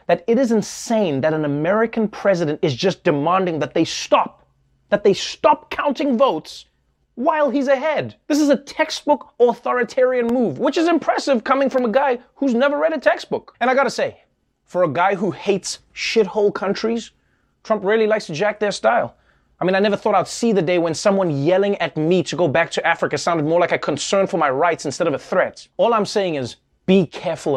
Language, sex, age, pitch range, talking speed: English, male, 30-49, 175-235 Hz, 205 wpm